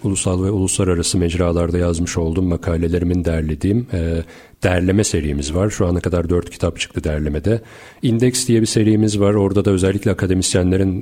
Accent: native